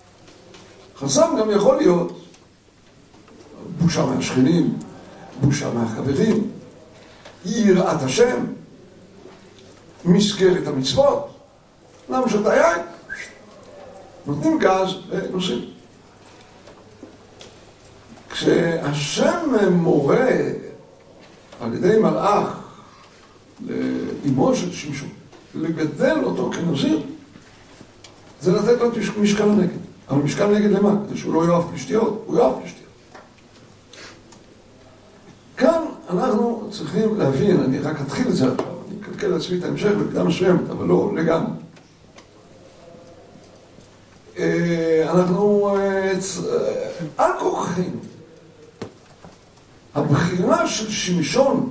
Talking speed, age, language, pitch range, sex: 80 wpm, 60-79, Hebrew, 165-220 Hz, male